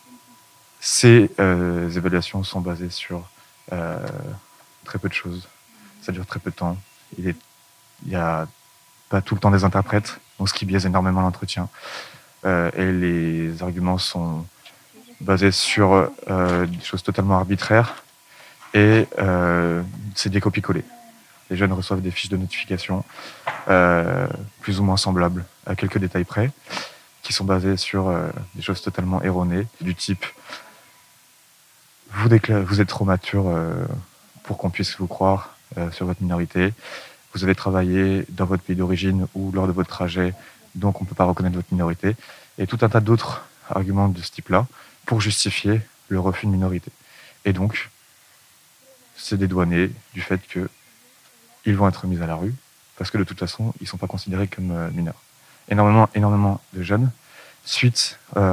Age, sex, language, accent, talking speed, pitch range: 20-39, male, French, French, 155 wpm, 90-105 Hz